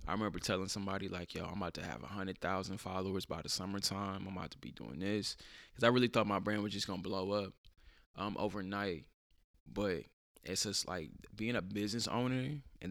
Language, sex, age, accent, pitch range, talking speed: English, male, 20-39, American, 95-110 Hz, 205 wpm